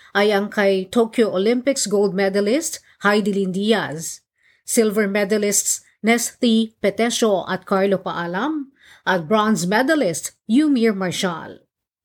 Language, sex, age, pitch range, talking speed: Filipino, female, 40-59, 185-235 Hz, 105 wpm